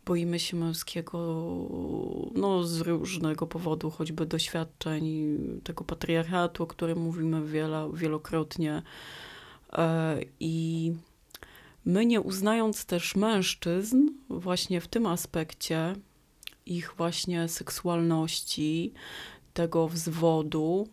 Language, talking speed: Polish, 90 wpm